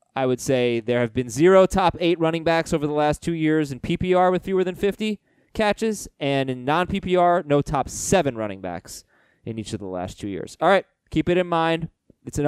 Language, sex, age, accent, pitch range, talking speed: English, male, 20-39, American, 130-180 Hz, 220 wpm